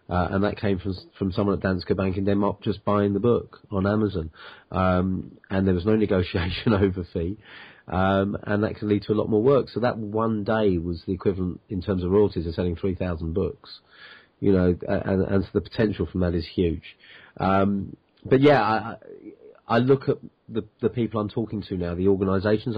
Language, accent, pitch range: English, British, 90-105 Hz